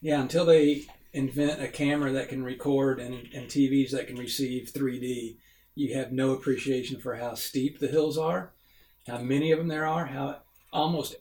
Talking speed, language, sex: 180 wpm, English, male